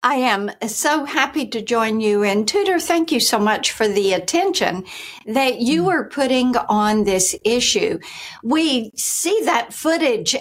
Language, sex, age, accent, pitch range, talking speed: English, female, 60-79, American, 200-255 Hz, 155 wpm